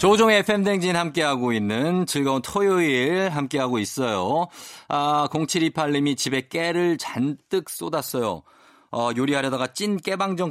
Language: Korean